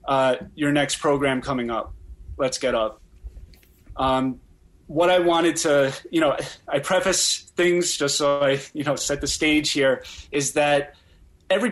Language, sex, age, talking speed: English, male, 30-49, 160 wpm